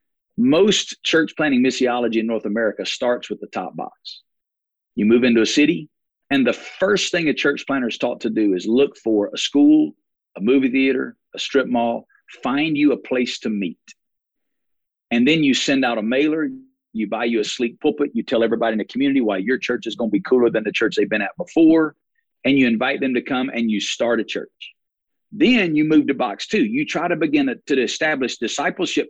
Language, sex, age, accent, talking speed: English, male, 50-69, American, 215 wpm